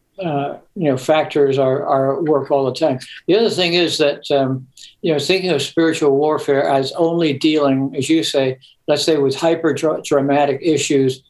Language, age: English, 60-79